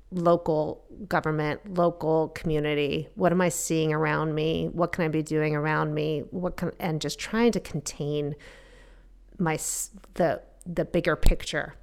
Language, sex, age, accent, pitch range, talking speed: English, female, 40-59, American, 145-175 Hz, 145 wpm